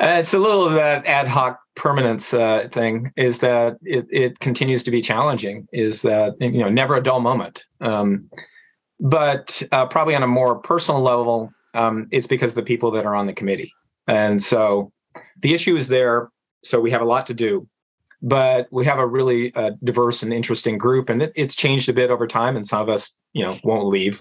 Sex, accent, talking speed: male, American, 210 wpm